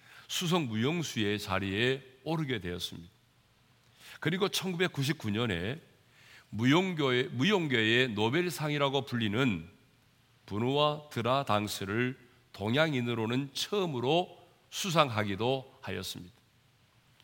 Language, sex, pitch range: Korean, male, 110-145 Hz